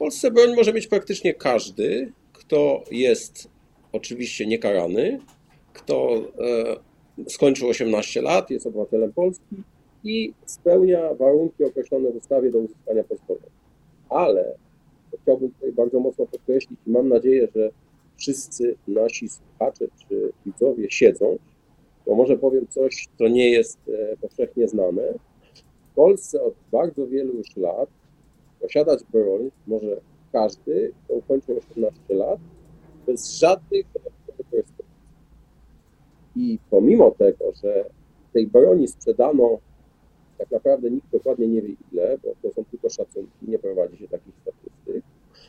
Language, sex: Polish, male